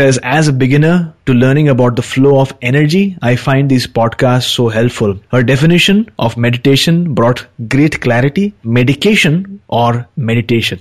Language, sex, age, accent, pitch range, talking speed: English, male, 30-49, Indian, 120-150 Hz, 145 wpm